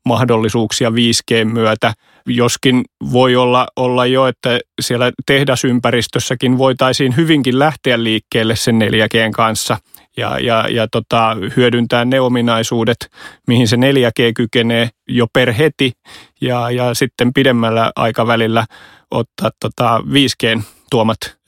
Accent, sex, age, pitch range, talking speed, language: native, male, 30-49, 115-130 Hz, 105 wpm, Finnish